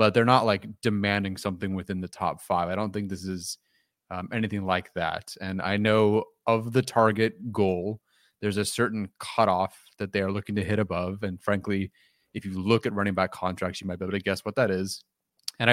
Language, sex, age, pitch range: English, male, 20-39, 95-110 Hz